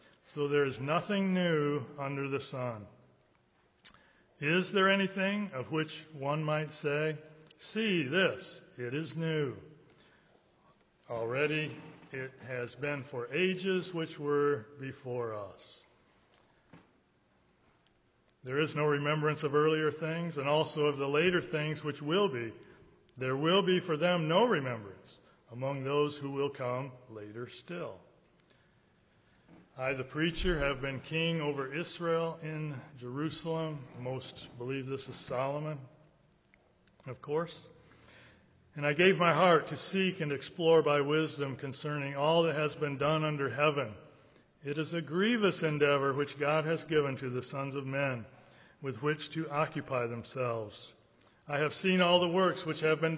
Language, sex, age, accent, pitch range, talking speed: English, male, 60-79, American, 135-160 Hz, 140 wpm